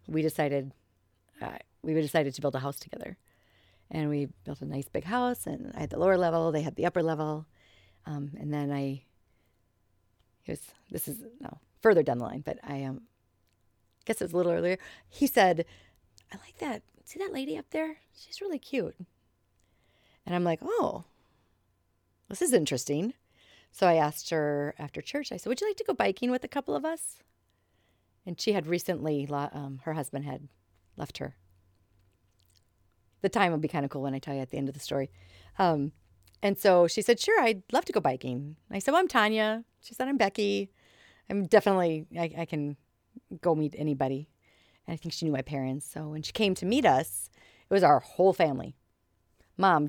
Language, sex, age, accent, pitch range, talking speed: English, female, 40-59, American, 120-185 Hz, 195 wpm